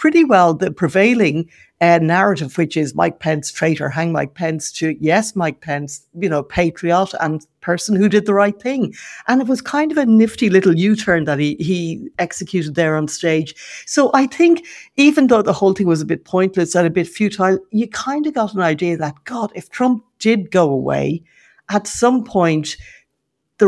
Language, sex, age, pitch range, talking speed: English, female, 60-79, 160-215 Hz, 200 wpm